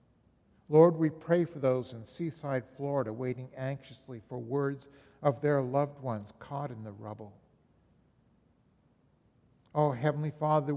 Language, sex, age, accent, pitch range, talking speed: English, male, 60-79, American, 125-155 Hz, 130 wpm